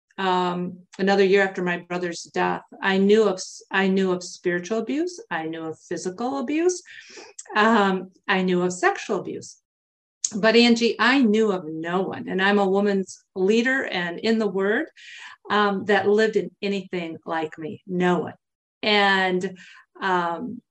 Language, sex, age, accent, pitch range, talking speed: English, female, 50-69, American, 185-225 Hz, 155 wpm